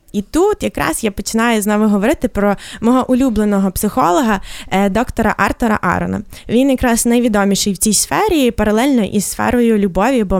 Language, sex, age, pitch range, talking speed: Ukrainian, female, 20-39, 210-265 Hz, 145 wpm